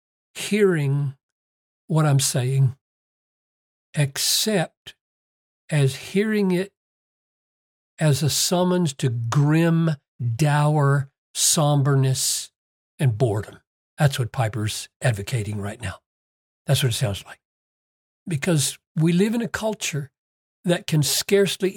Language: English